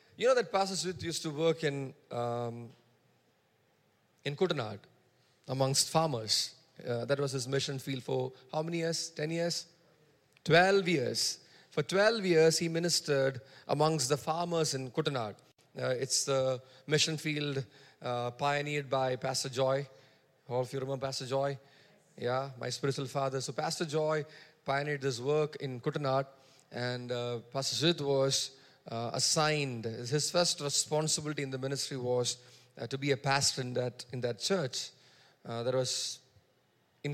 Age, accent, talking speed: 30-49, Indian, 150 wpm